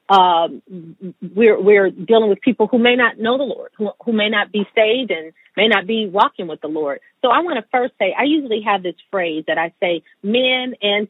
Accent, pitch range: American, 190-250 Hz